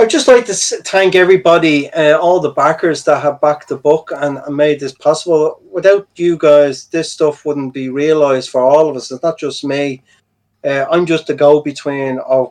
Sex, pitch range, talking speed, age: male, 130-155 Hz, 205 wpm, 30-49